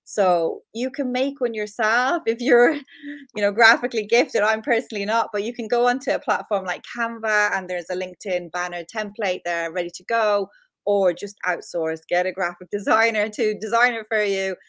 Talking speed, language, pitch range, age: 190 wpm, English, 175-225 Hz, 30-49